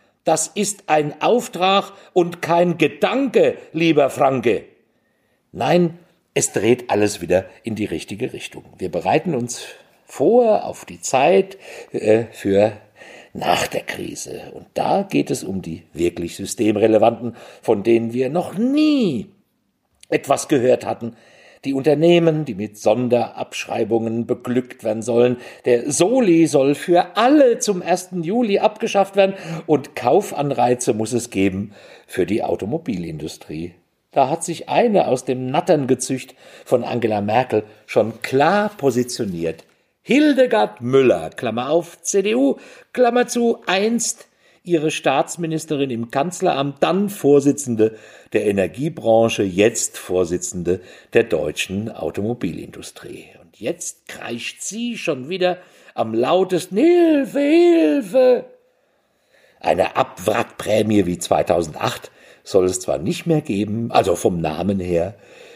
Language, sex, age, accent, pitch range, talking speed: German, male, 50-69, German, 115-185 Hz, 120 wpm